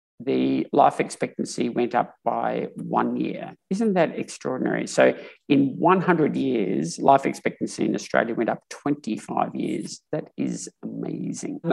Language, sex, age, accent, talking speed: English, male, 50-69, Australian, 135 wpm